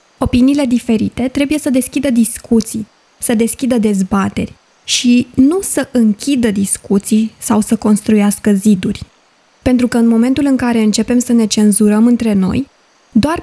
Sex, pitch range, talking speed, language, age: female, 210-265 Hz, 140 wpm, Romanian, 20-39